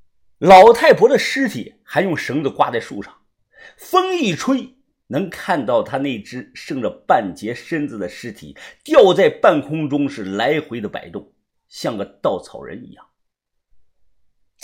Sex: male